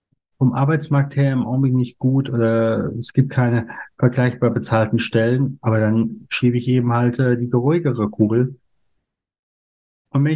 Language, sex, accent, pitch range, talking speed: German, male, German, 110-135 Hz, 150 wpm